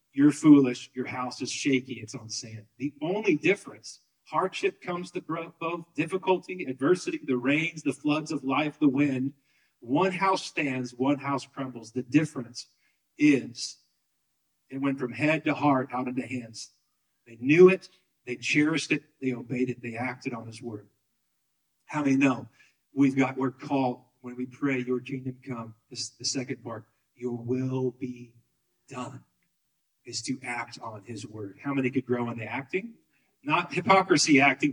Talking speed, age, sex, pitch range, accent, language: 160 wpm, 40-59, male, 120-140 Hz, American, English